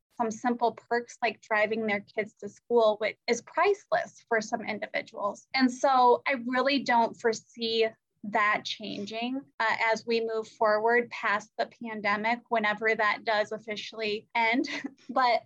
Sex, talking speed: female, 145 wpm